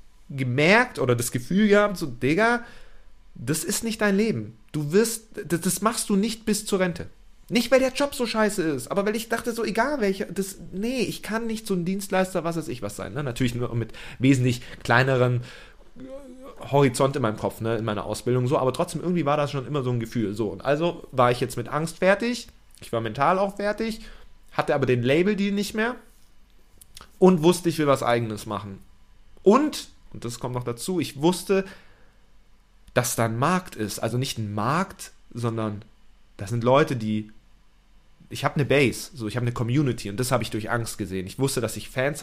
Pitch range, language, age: 115-185 Hz, German, 40-59